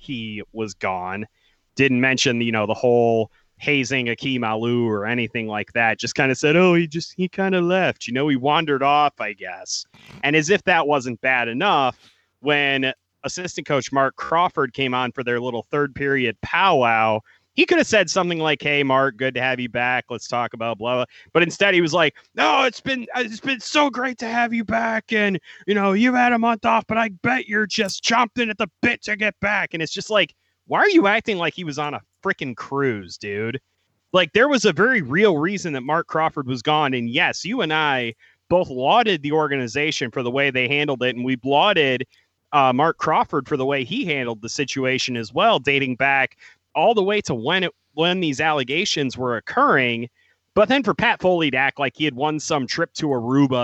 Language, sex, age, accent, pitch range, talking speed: English, male, 30-49, American, 125-180 Hz, 220 wpm